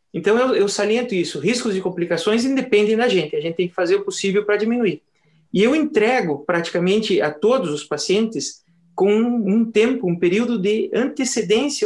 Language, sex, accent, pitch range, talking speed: Portuguese, male, Brazilian, 180-225 Hz, 175 wpm